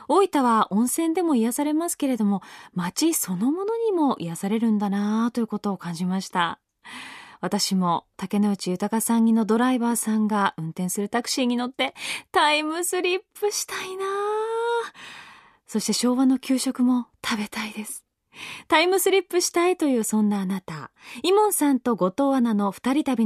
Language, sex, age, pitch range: Japanese, female, 20-39, 210-325 Hz